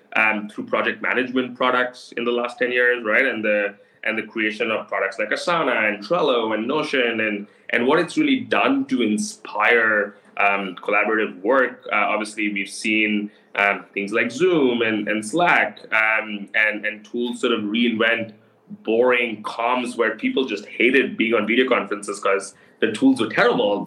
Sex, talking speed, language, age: male, 170 wpm, English, 20-39